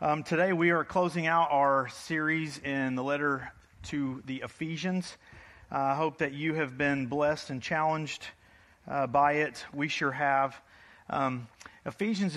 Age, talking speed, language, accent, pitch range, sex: 40-59, 150 wpm, English, American, 130-155 Hz, male